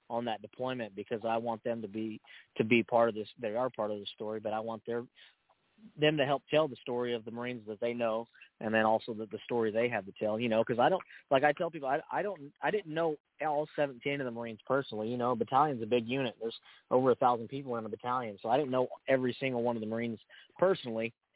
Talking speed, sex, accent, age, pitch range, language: 260 wpm, male, American, 20-39, 110-130 Hz, English